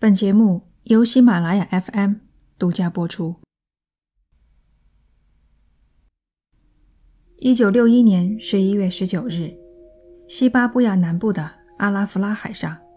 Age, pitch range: 20-39, 170-215 Hz